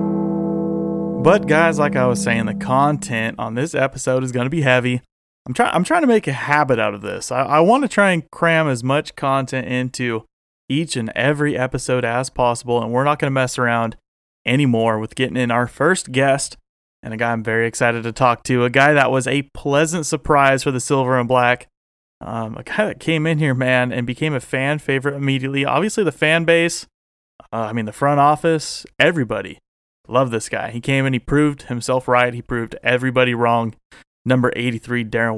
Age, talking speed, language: 30-49, 205 wpm, English